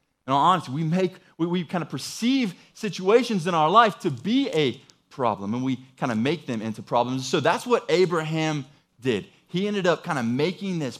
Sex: male